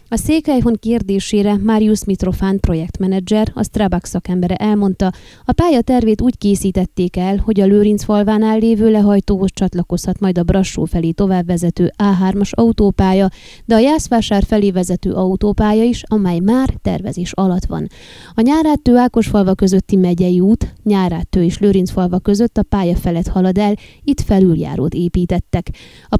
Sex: female